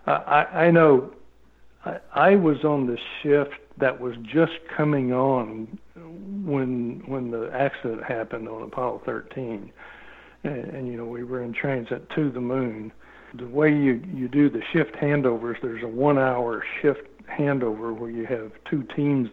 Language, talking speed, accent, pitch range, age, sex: English, 160 wpm, American, 120-145 Hz, 60-79, male